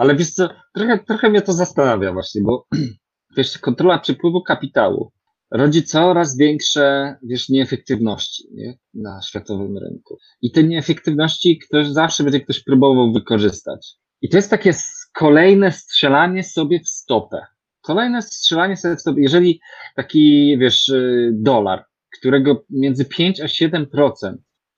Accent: native